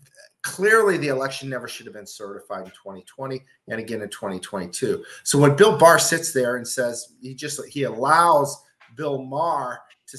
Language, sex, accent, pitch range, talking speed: English, male, American, 120-145 Hz, 170 wpm